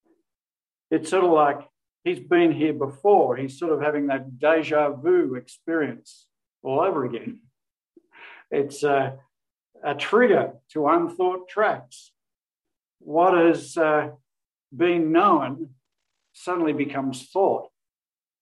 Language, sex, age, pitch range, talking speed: English, male, 60-79, 135-175 Hz, 110 wpm